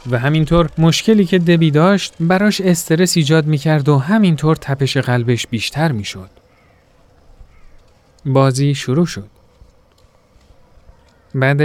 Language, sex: Persian, male